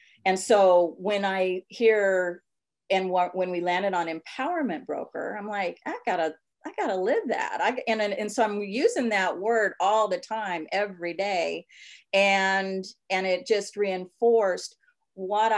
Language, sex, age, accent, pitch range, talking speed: English, female, 40-59, American, 165-210 Hz, 155 wpm